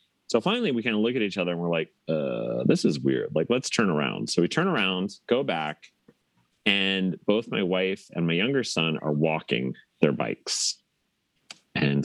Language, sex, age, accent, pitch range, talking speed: English, male, 30-49, American, 80-115 Hz, 195 wpm